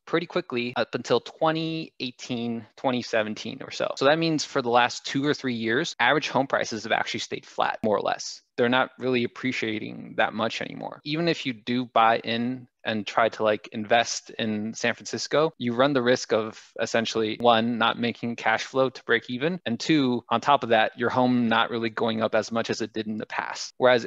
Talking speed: 210 wpm